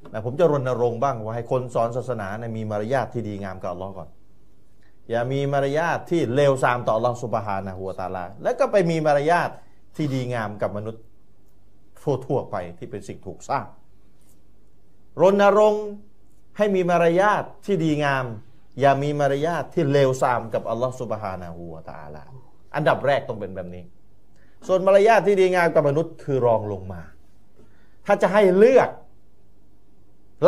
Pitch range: 100-155 Hz